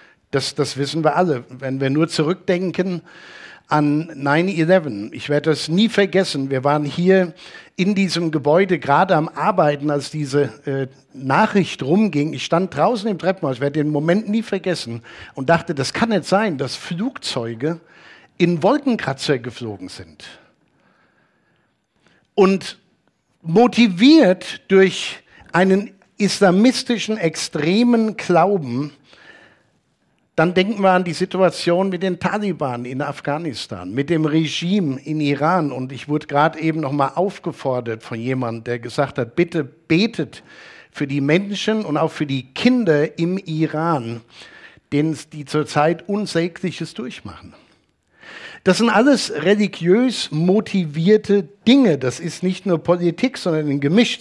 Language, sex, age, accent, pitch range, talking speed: German, male, 60-79, German, 145-190 Hz, 130 wpm